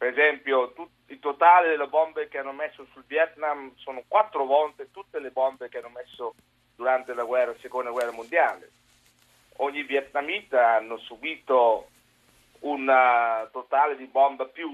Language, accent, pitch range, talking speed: Italian, native, 120-145 Hz, 145 wpm